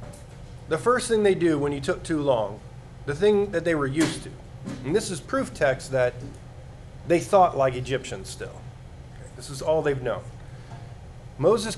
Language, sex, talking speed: English, male, 175 wpm